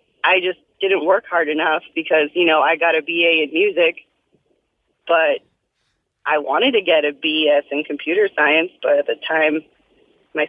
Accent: American